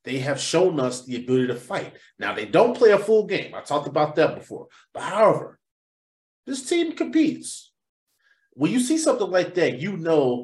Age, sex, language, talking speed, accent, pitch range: 30-49, male, English, 190 wpm, American, 135-205 Hz